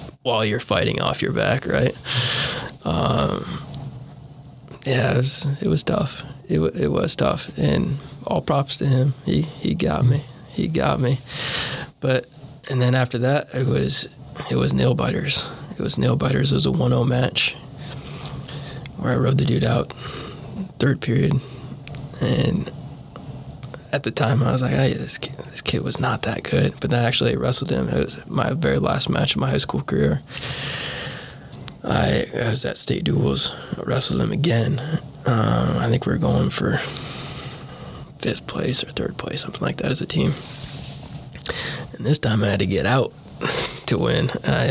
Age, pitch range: 20-39, 125-145 Hz